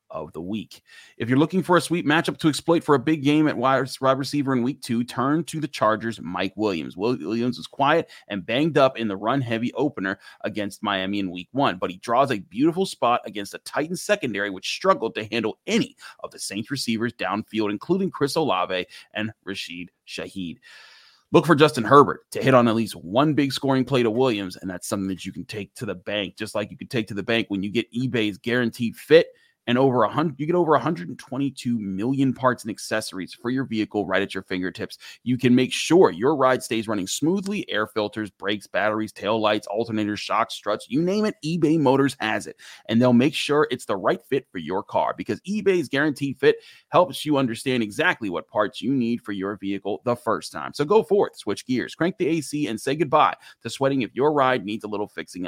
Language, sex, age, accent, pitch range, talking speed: English, male, 30-49, American, 105-150 Hz, 215 wpm